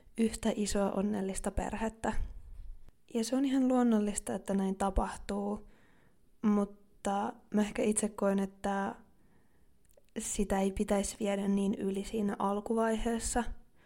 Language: Finnish